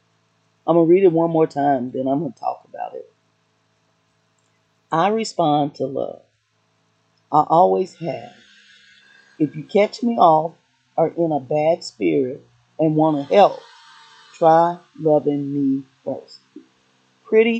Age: 40-59